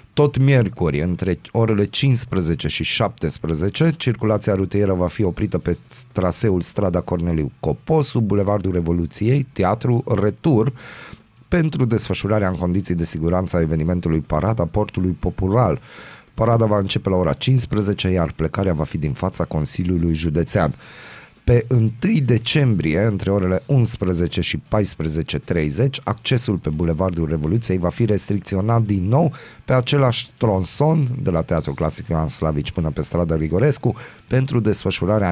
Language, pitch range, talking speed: Romanian, 85-115 Hz, 130 wpm